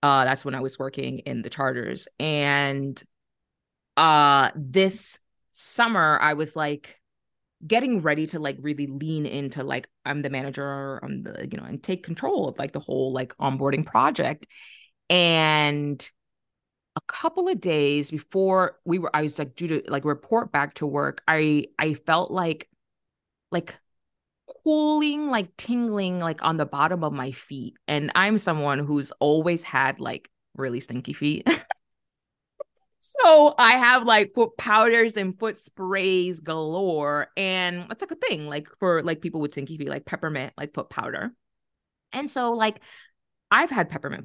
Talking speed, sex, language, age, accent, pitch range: 160 wpm, female, English, 20-39, American, 145-200 Hz